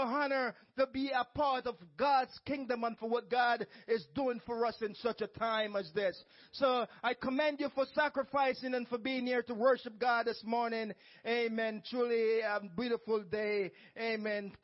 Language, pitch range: English, 165-215 Hz